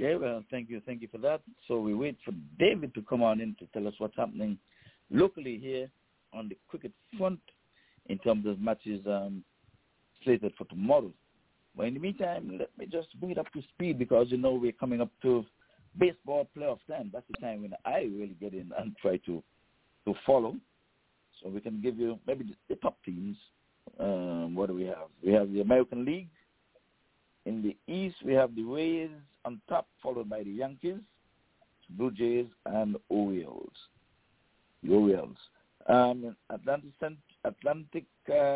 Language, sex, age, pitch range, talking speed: English, male, 60-79, 105-150 Hz, 175 wpm